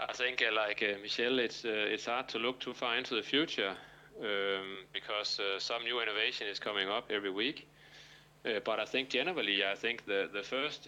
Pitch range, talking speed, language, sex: 105-145 Hz, 210 wpm, Danish, male